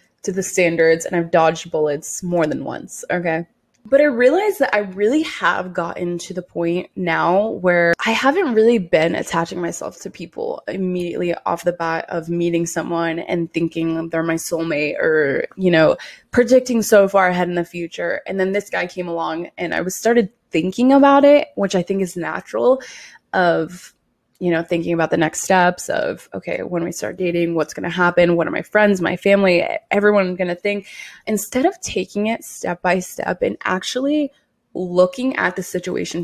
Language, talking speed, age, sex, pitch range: English, 185 wpm, 20-39, female, 170-210 Hz